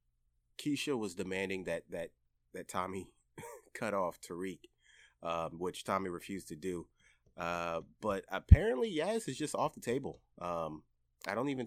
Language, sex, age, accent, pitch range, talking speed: English, male, 30-49, American, 65-105 Hz, 150 wpm